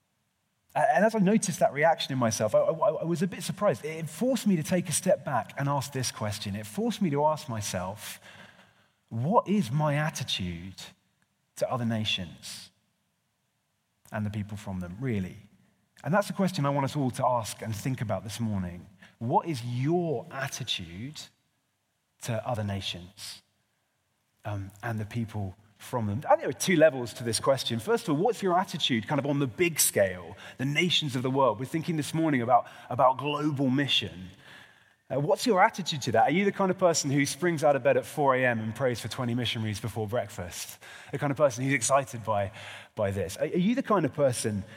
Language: English